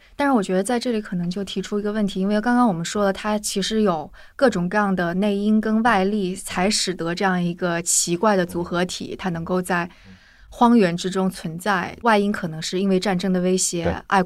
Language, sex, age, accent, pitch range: Chinese, female, 20-39, native, 180-210 Hz